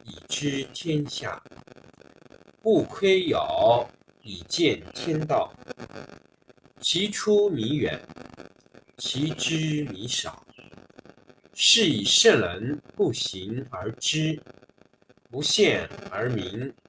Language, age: Chinese, 50-69